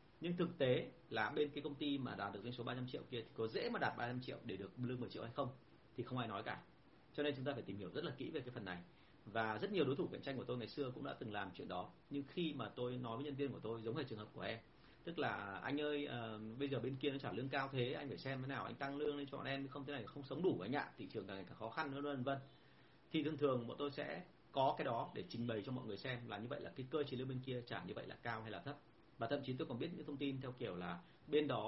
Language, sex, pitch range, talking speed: Vietnamese, male, 115-145 Hz, 330 wpm